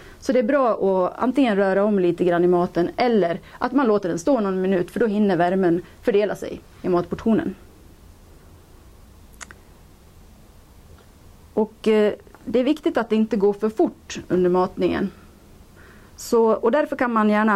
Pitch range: 170-215 Hz